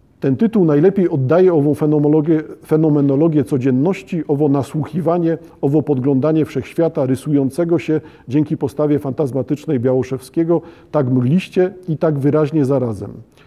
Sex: male